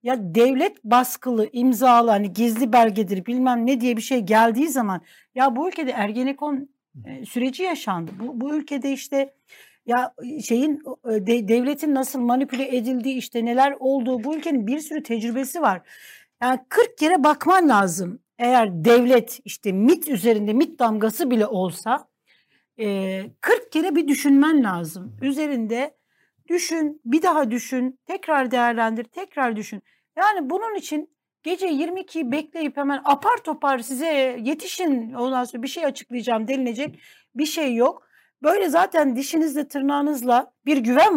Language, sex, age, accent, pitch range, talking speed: Turkish, female, 60-79, native, 235-305 Hz, 135 wpm